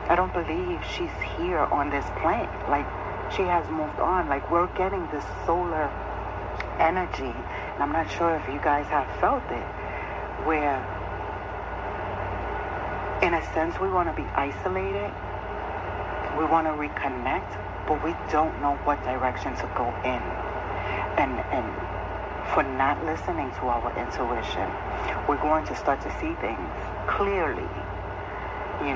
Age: 60-79